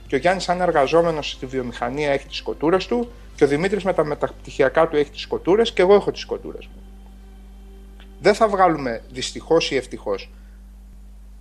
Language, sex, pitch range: Greek, male, 125-205 Hz